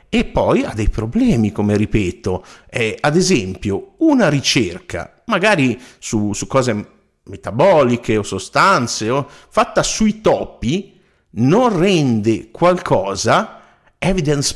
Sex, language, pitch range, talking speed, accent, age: male, Italian, 105-150 Hz, 110 wpm, native, 50-69